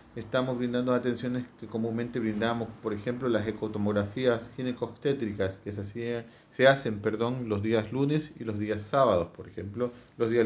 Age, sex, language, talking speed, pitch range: 40-59, male, Spanish, 160 wpm, 110-125 Hz